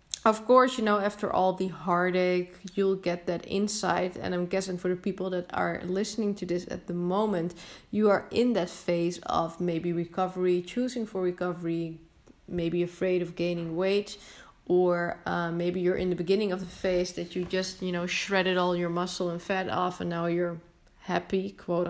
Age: 20-39